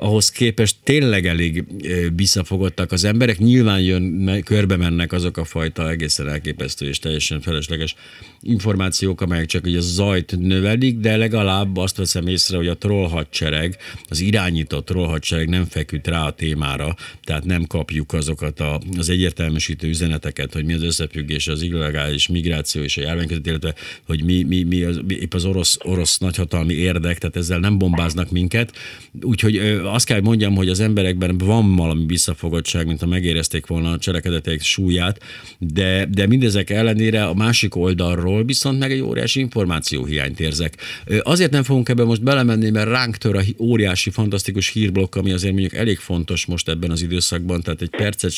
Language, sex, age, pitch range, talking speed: Hungarian, male, 50-69, 85-105 Hz, 160 wpm